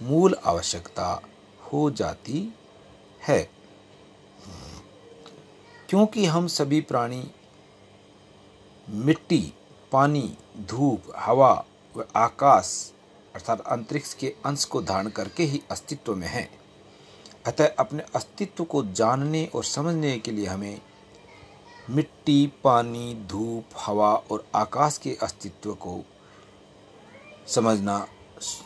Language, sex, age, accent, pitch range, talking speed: Hindi, male, 60-79, native, 105-150 Hz, 95 wpm